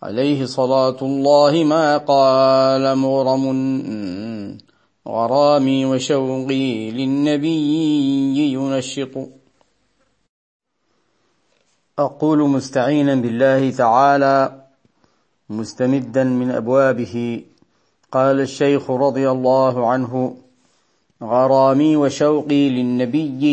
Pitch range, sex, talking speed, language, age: 125-145 Hz, male, 65 wpm, Arabic, 40-59